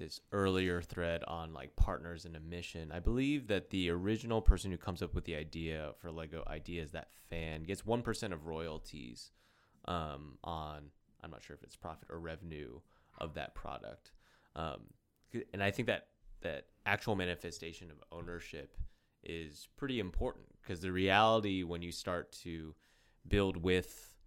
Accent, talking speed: American, 165 wpm